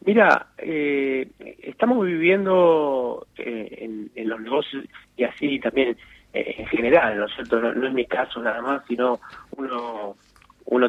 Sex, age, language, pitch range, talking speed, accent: male, 30-49, Spanish, 120-145 Hz, 155 wpm, Argentinian